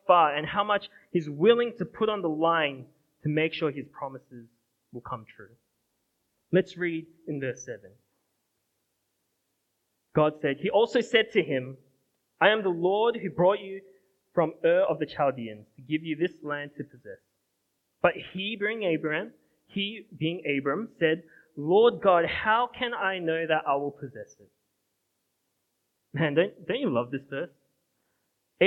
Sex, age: male, 20-39